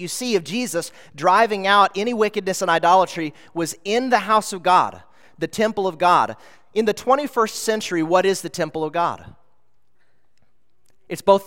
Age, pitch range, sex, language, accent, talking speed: 30-49, 150-195 Hz, male, English, American, 165 wpm